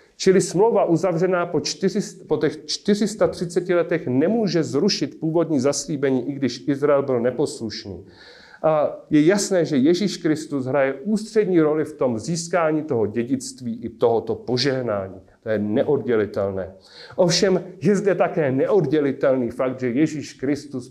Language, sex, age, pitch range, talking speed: Czech, male, 40-59, 130-185 Hz, 135 wpm